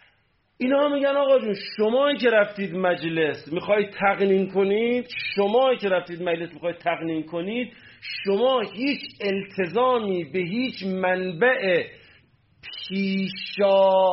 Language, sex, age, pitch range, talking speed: Persian, male, 40-59, 160-220 Hz, 115 wpm